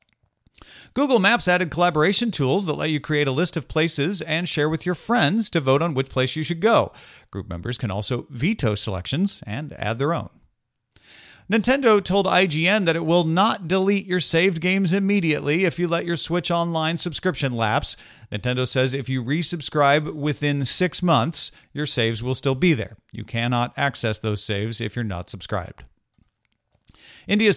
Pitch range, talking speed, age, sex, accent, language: 115-165 Hz, 175 wpm, 40-59, male, American, English